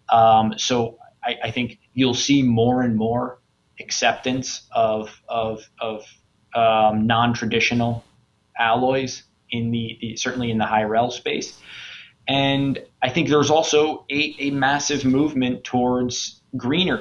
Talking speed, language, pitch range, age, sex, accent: 130 wpm, English, 110-125 Hz, 20-39, male, American